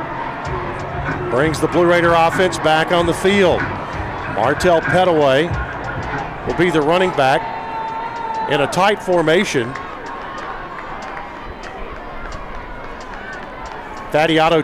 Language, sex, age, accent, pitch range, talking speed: English, male, 50-69, American, 145-185 Hz, 85 wpm